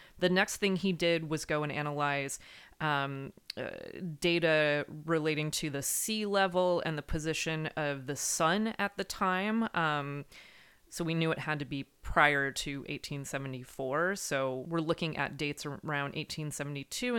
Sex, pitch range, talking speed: female, 145-180 Hz, 155 wpm